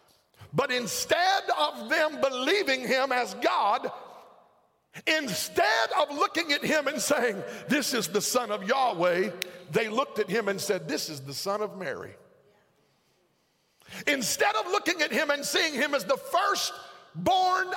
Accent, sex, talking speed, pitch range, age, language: American, male, 150 wpm, 185-290 Hz, 50-69, English